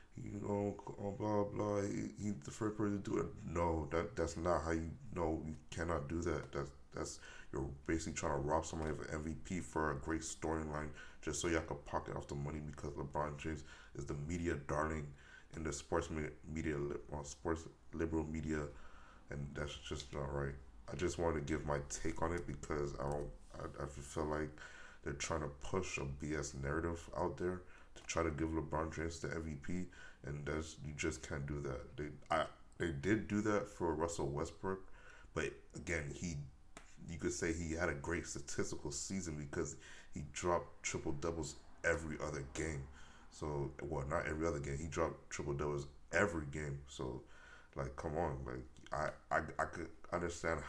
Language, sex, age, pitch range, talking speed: English, male, 20-39, 70-80 Hz, 185 wpm